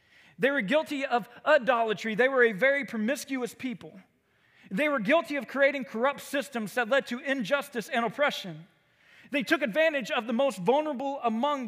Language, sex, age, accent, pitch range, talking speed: English, male, 40-59, American, 210-295 Hz, 165 wpm